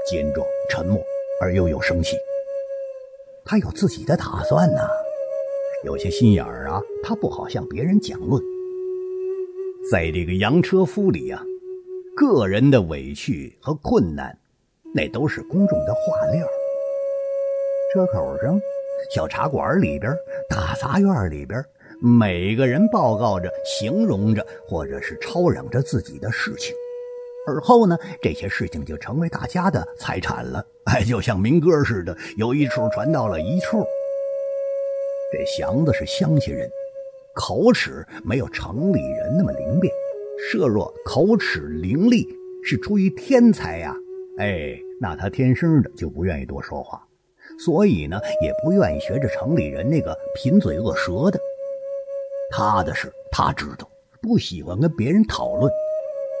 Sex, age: male, 50-69